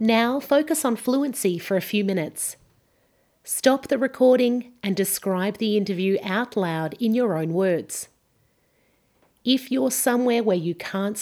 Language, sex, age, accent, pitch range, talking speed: English, female, 40-59, Australian, 175-240 Hz, 145 wpm